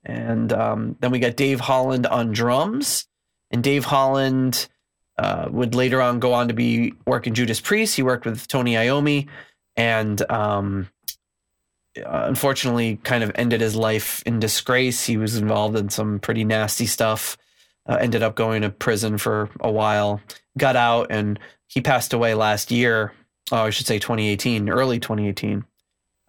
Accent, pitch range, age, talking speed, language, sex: American, 105-130 Hz, 20-39, 160 wpm, English, male